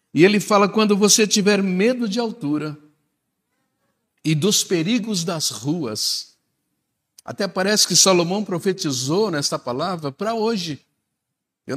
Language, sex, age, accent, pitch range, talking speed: Portuguese, male, 60-79, Brazilian, 150-210 Hz, 120 wpm